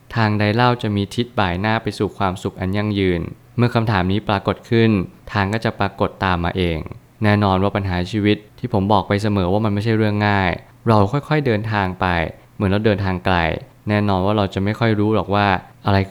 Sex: male